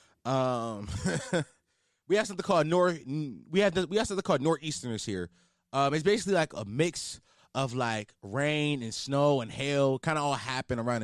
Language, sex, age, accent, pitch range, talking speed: English, male, 20-39, American, 115-170 Hz, 175 wpm